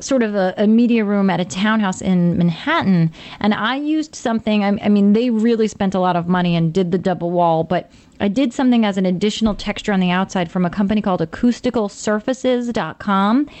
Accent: American